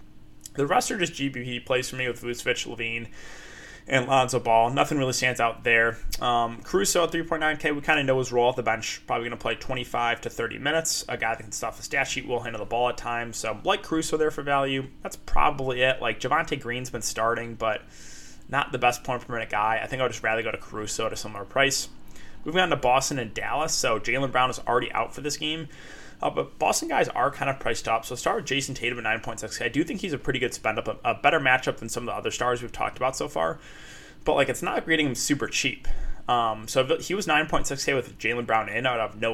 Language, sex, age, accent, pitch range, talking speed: English, male, 20-39, American, 115-140 Hz, 250 wpm